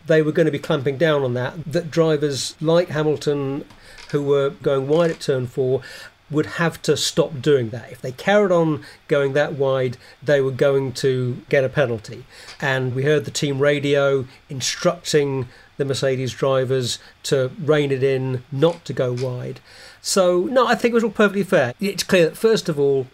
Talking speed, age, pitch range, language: 190 wpm, 40-59, 130-155 Hz, English